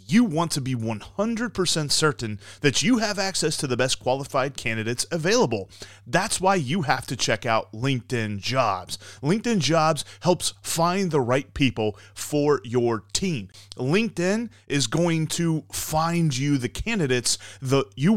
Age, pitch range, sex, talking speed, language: 30-49, 120-175 Hz, male, 150 wpm, English